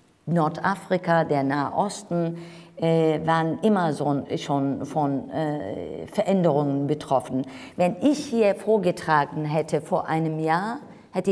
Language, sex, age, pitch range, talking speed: German, female, 50-69, 155-195 Hz, 100 wpm